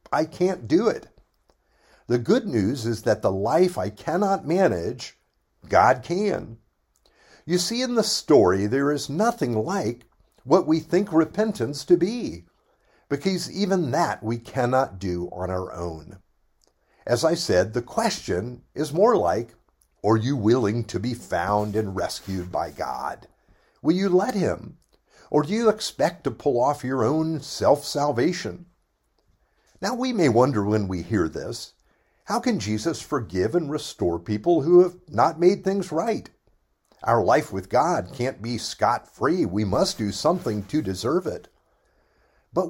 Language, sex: English, male